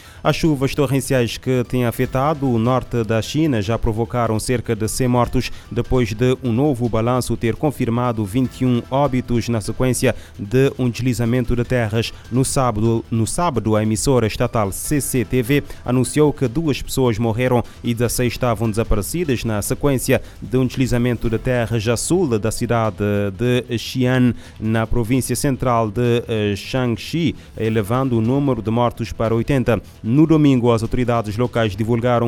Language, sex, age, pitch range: Portuguese, male, 30-49, 115-130 Hz